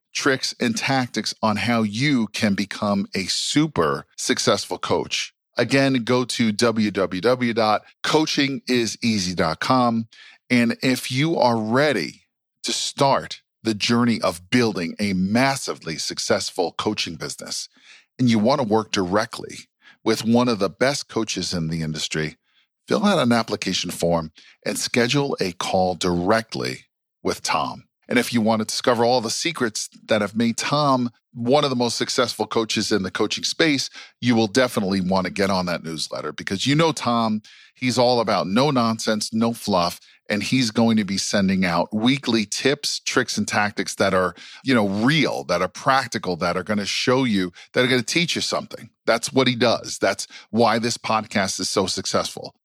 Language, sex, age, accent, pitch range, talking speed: English, male, 40-59, American, 100-125 Hz, 165 wpm